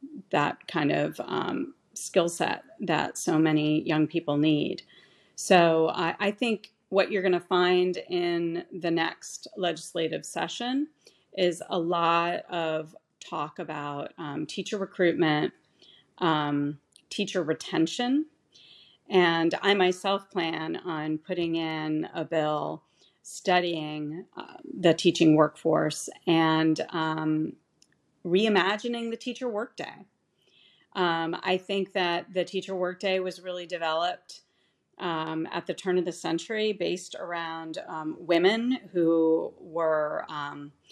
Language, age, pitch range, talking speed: English, 40-59, 160-195 Hz, 120 wpm